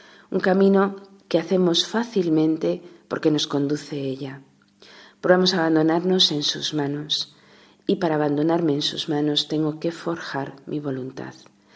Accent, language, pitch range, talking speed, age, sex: Spanish, Spanish, 145-170 Hz, 130 wpm, 40-59, female